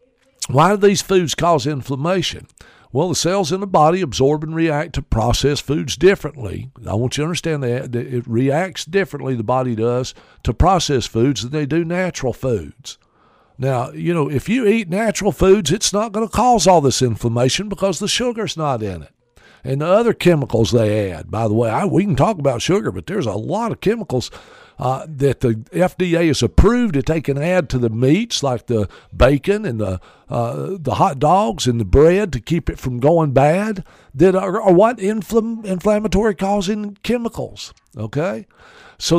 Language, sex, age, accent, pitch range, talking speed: English, male, 60-79, American, 130-190 Hz, 185 wpm